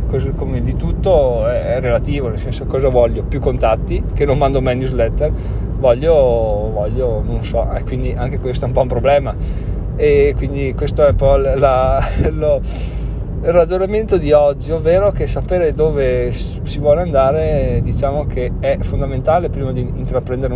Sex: male